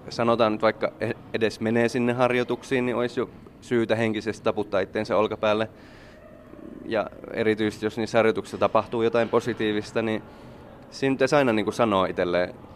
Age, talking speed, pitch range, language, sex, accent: 20-39, 145 wpm, 95-115 Hz, Finnish, male, native